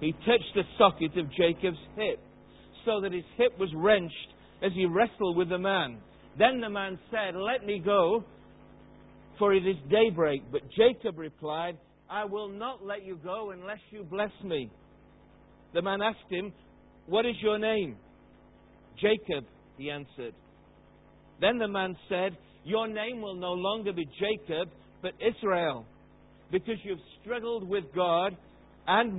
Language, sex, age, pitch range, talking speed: English, male, 60-79, 155-205 Hz, 150 wpm